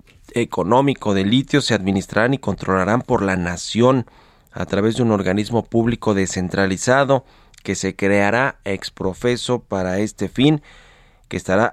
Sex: male